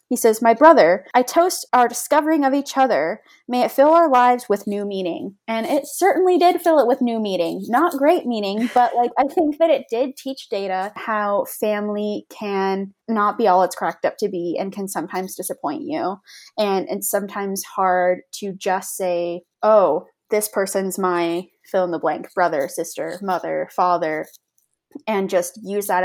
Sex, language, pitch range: female, English, 195-265 Hz